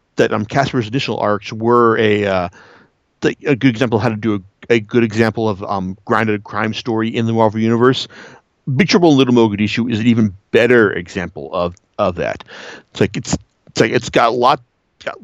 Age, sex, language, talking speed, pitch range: 50-69, male, English, 195 wpm, 110-140 Hz